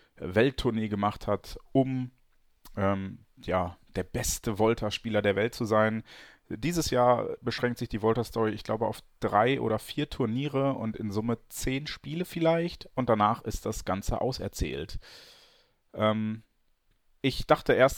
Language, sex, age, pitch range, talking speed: German, male, 30-49, 100-120 Hz, 140 wpm